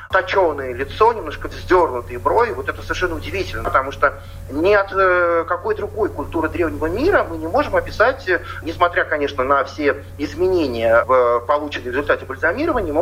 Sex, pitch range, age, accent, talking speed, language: male, 140-215 Hz, 30-49, native, 150 wpm, Russian